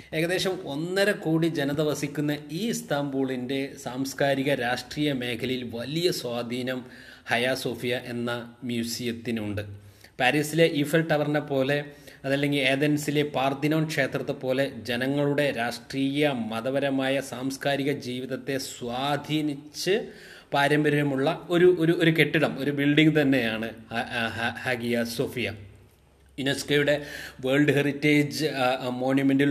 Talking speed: 40 wpm